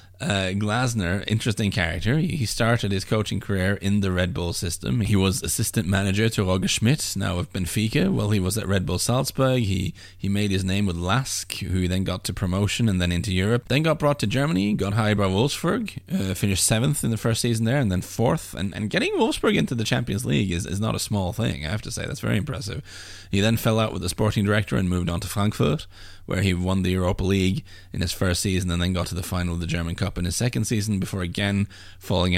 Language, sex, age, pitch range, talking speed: English, male, 20-39, 90-110 Hz, 245 wpm